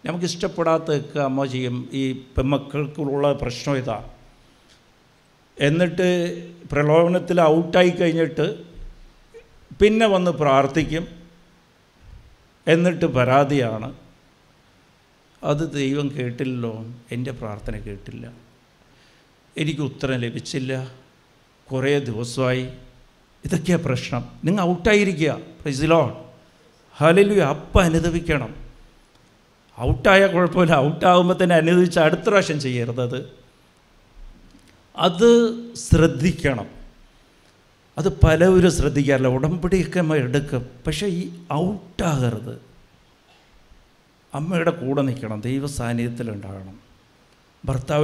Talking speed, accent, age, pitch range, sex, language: 85 wpm, Indian, 60-79, 125-170 Hz, male, English